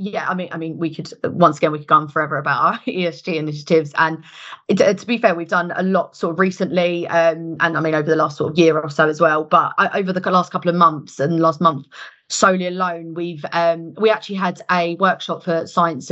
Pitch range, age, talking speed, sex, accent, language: 165-185 Hz, 30-49, 250 wpm, female, British, English